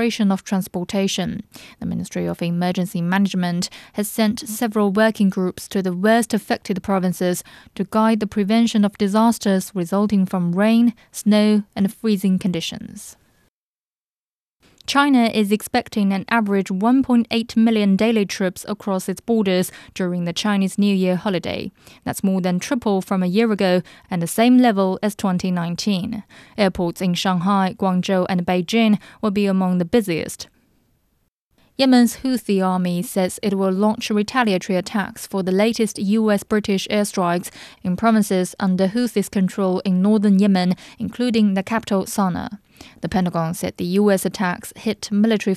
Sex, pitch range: female, 185-220 Hz